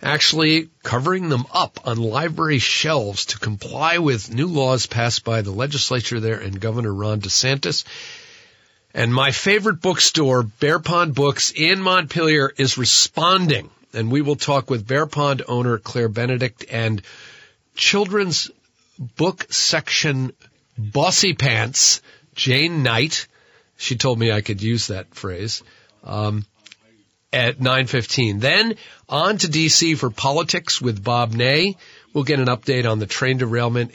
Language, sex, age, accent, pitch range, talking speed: English, male, 50-69, American, 115-155 Hz, 140 wpm